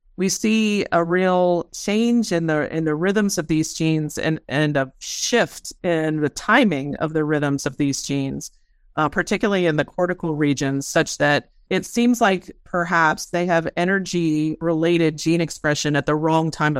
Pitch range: 150-175 Hz